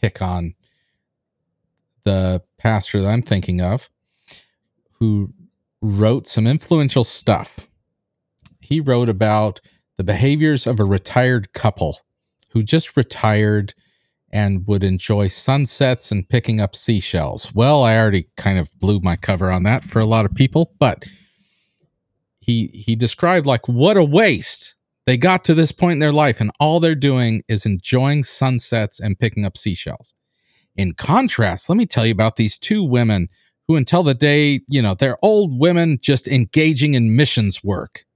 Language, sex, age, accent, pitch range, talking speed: English, male, 40-59, American, 105-145 Hz, 155 wpm